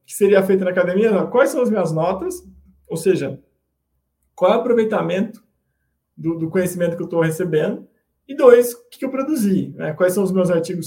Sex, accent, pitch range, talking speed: male, Brazilian, 170-220 Hz, 200 wpm